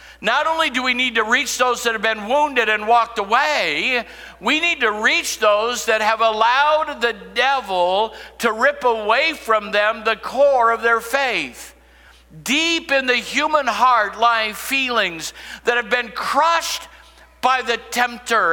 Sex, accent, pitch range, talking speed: male, American, 220-285 Hz, 160 wpm